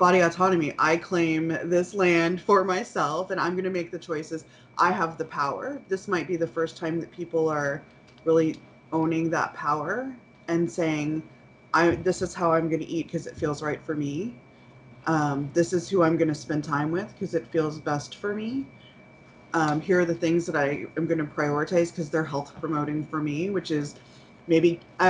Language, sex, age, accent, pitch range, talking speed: English, female, 20-39, American, 155-185 Hz, 195 wpm